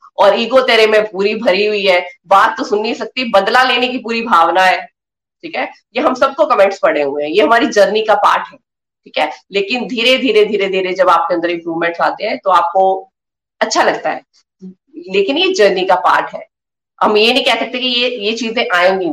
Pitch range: 195-245 Hz